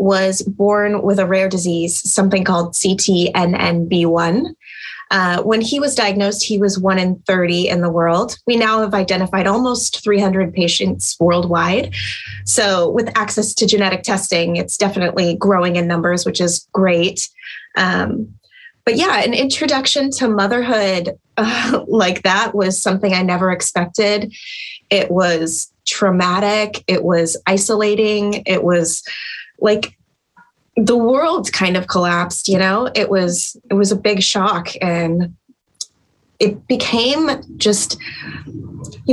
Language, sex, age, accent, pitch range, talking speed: English, female, 20-39, American, 175-210 Hz, 135 wpm